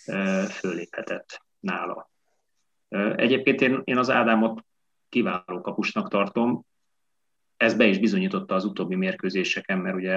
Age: 30-49